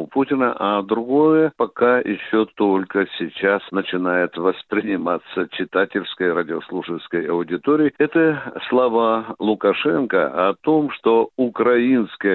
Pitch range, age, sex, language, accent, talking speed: 105-145 Hz, 60-79, male, Russian, native, 90 wpm